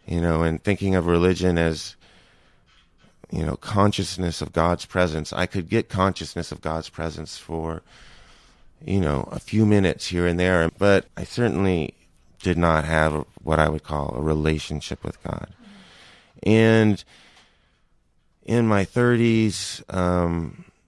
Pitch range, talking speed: 80-95 Hz, 135 wpm